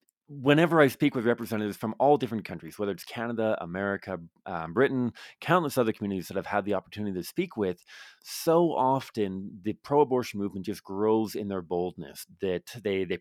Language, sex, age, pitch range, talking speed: English, male, 30-49, 100-130 Hz, 175 wpm